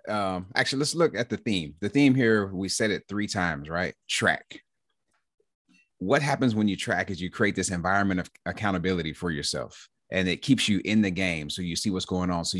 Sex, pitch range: male, 85-105 Hz